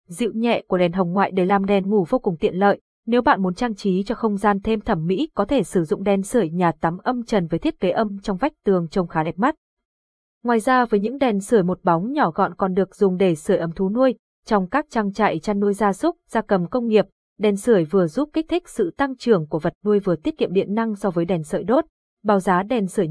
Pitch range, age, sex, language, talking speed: 180-235 Hz, 20-39, female, Vietnamese, 265 wpm